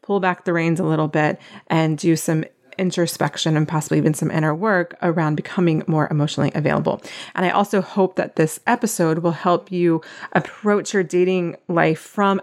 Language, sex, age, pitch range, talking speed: English, female, 30-49, 160-190 Hz, 180 wpm